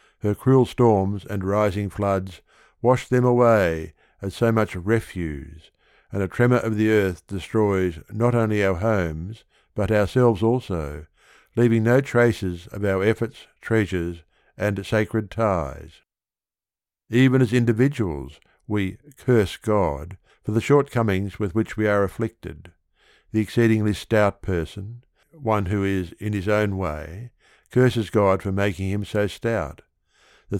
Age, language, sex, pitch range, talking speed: 60-79, English, male, 95-115 Hz, 135 wpm